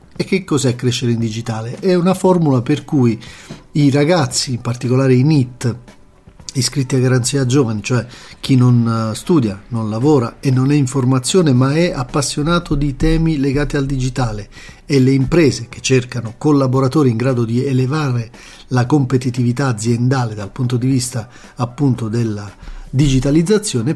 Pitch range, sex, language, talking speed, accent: 120-150 Hz, male, Italian, 150 wpm, native